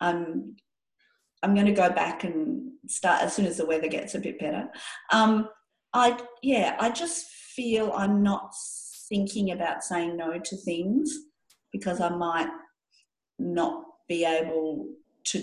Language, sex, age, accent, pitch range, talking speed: English, female, 50-69, Australian, 180-270 Hz, 150 wpm